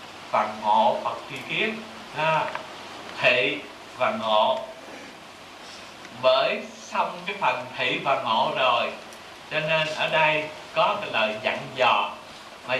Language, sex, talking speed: Vietnamese, male, 120 wpm